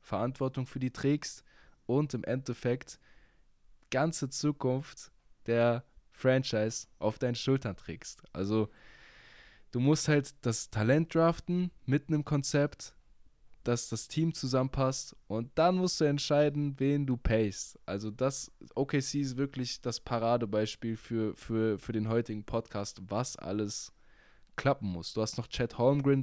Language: German